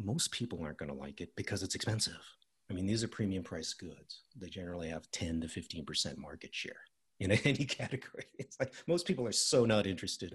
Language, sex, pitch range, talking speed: English, male, 85-115 Hz, 210 wpm